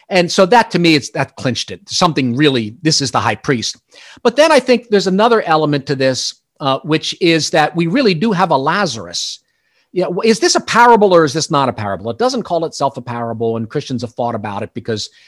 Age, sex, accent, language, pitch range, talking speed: 50-69, male, American, English, 135-215 Hz, 235 wpm